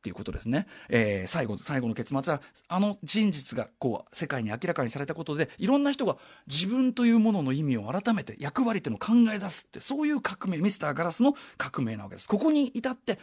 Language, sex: Japanese, male